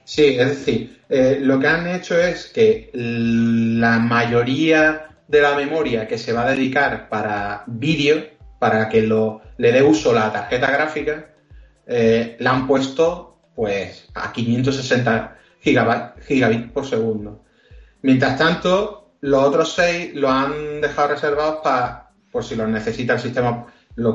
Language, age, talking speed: Spanish, 30-49, 145 wpm